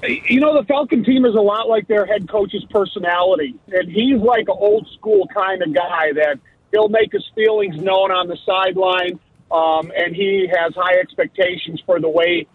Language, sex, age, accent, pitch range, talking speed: English, male, 50-69, American, 160-195 Hz, 185 wpm